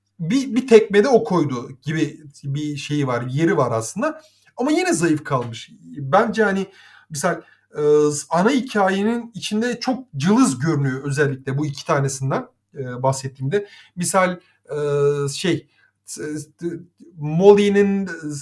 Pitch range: 150-200 Hz